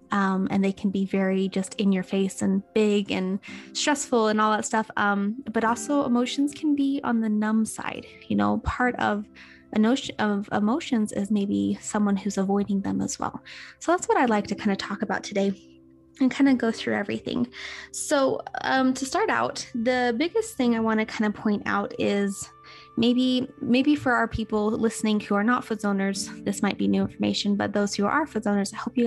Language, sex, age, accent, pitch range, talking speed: English, female, 10-29, American, 195-255 Hz, 210 wpm